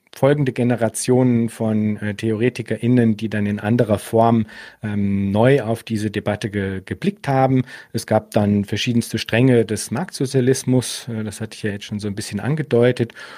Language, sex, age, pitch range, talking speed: German, male, 40-59, 105-120 Hz, 155 wpm